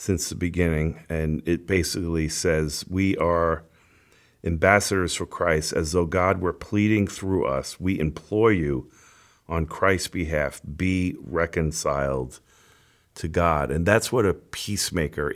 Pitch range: 80-100 Hz